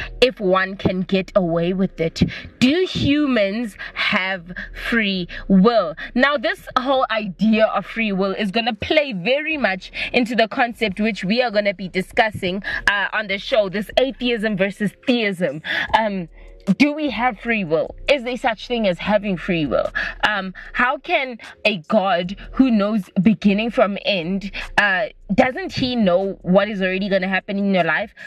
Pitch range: 190-250 Hz